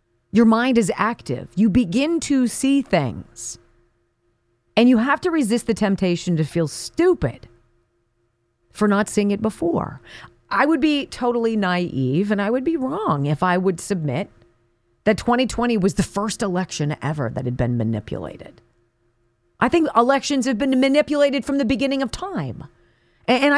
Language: English